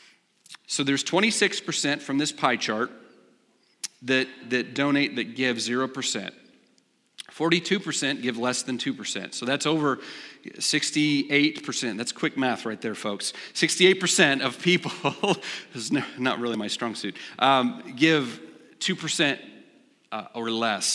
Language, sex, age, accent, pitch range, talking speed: English, male, 40-59, American, 125-165 Hz, 125 wpm